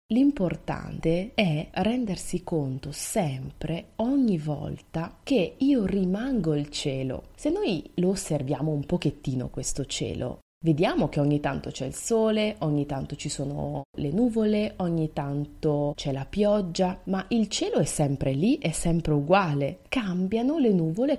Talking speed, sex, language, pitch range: 140 wpm, female, Italian, 145-215 Hz